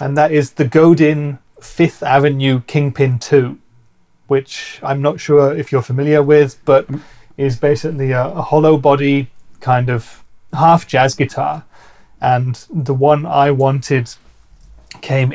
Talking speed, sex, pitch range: 135 wpm, male, 130-150 Hz